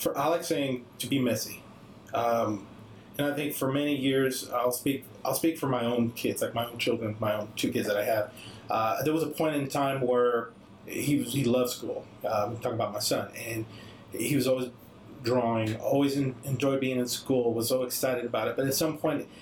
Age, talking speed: 30-49, 220 wpm